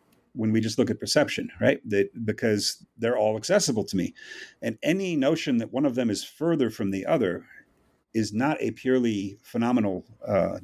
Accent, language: American, English